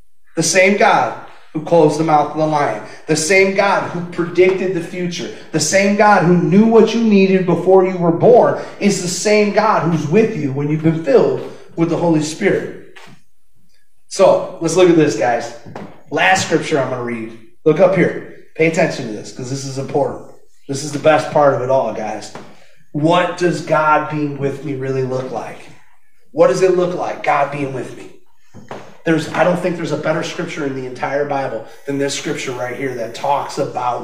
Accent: American